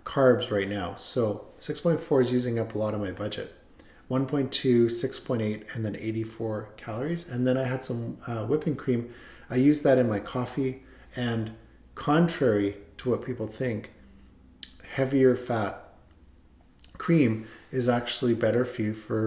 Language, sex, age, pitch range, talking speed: English, male, 40-59, 100-125 Hz, 150 wpm